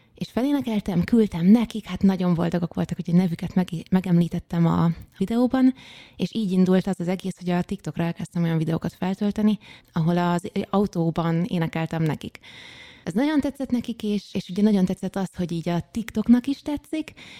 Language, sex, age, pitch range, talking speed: Hungarian, female, 20-39, 170-195 Hz, 165 wpm